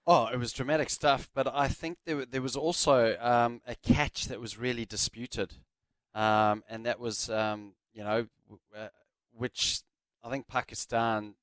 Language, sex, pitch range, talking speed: English, male, 105-120 Hz, 160 wpm